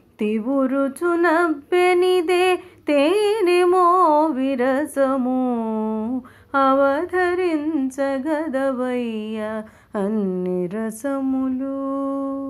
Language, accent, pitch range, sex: Telugu, native, 220-290 Hz, female